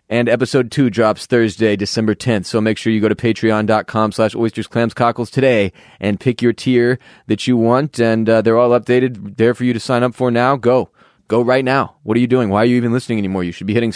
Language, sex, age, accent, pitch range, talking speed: English, male, 20-39, American, 110-125 Hz, 235 wpm